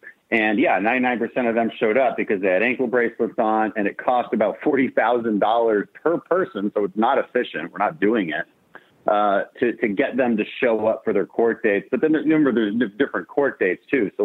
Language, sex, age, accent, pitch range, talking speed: English, male, 40-59, American, 105-130 Hz, 205 wpm